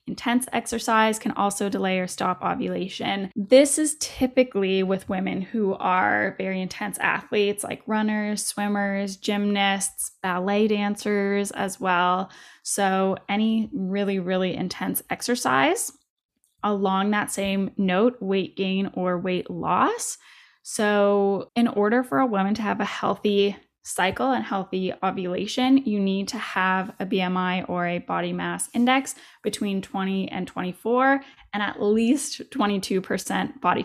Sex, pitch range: female, 190-230 Hz